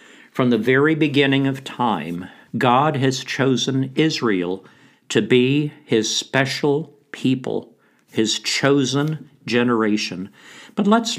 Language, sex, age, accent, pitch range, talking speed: English, male, 50-69, American, 110-145 Hz, 105 wpm